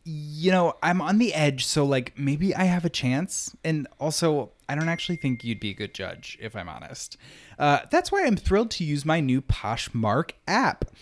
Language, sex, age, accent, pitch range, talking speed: English, male, 30-49, American, 120-175 Hz, 205 wpm